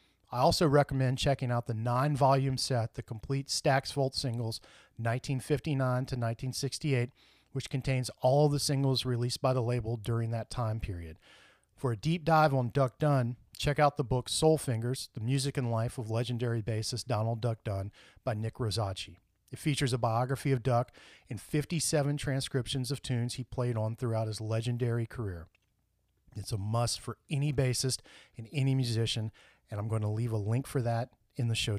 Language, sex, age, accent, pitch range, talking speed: English, male, 40-59, American, 110-135 Hz, 175 wpm